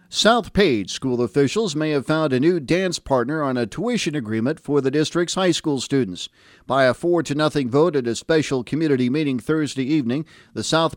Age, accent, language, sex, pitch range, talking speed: 50-69, American, English, male, 125-165 Hz, 195 wpm